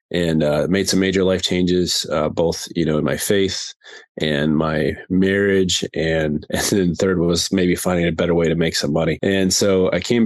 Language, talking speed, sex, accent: English, 205 wpm, male, American